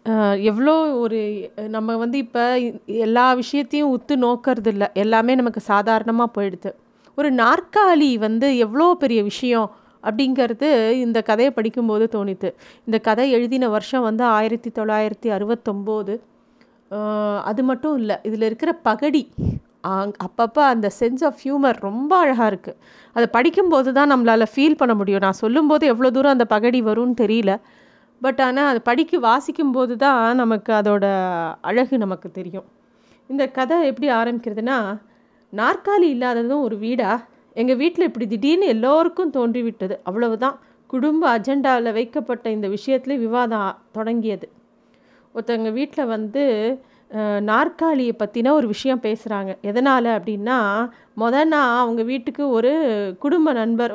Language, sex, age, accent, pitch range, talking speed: Tamil, female, 30-49, native, 220-270 Hz, 125 wpm